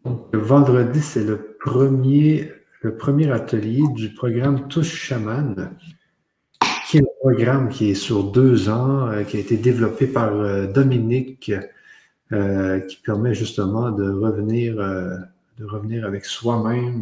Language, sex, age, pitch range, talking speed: French, male, 50-69, 105-135 Hz, 125 wpm